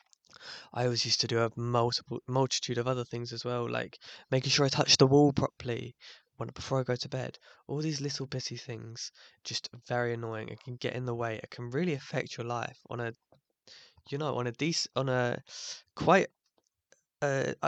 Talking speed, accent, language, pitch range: 190 wpm, British, English, 120-145 Hz